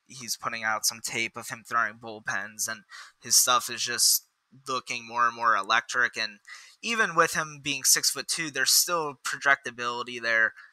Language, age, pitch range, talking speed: English, 20-39, 125-155 Hz, 175 wpm